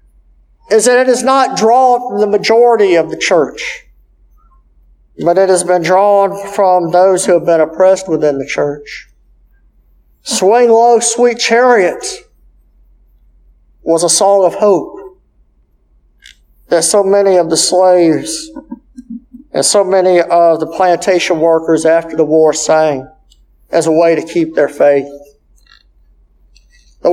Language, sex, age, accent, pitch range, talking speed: English, male, 50-69, American, 170-240 Hz, 135 wpm